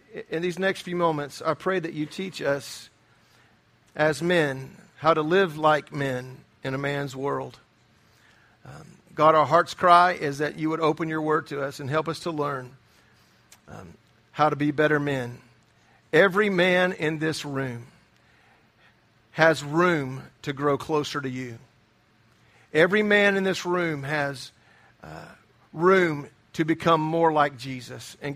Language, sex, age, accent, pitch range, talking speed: English, male, 50-69, American, 135-180 Hz, 155 wpm